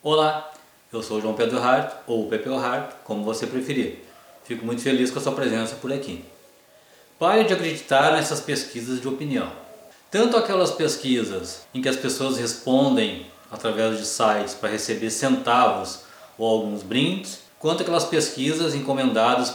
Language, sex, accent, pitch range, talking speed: Portuguese, male, Brazilian, 125-170 Hz, 155 wpm